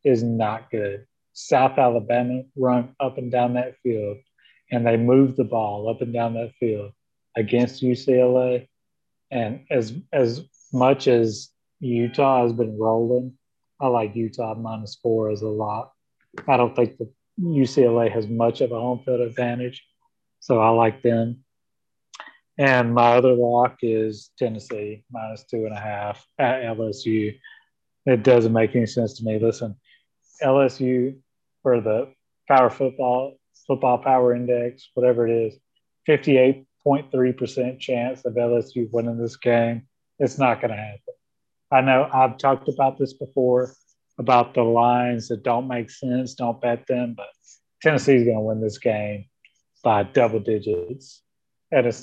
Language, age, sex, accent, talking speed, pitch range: English, 30-49, male, American, 150 wpm, 115-130 Hz